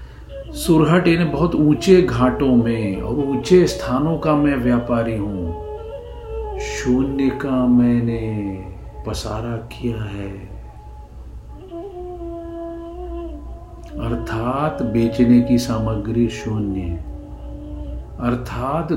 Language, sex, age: Hindi, male, 50-69